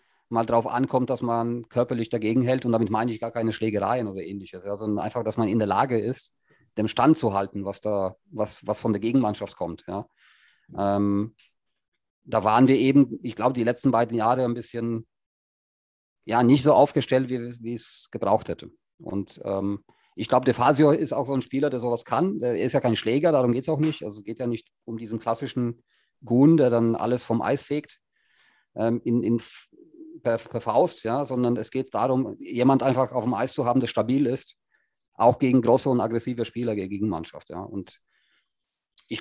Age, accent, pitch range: 40-59, German, 110-130 Hz